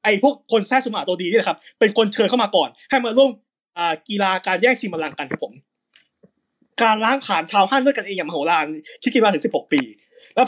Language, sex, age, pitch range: Thai, male, 20-39, 190-255 Hz